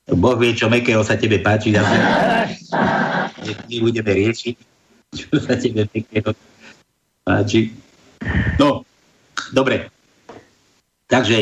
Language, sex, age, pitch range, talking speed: Slovak, male, 60-79, 110-135 Hz, 100 wpm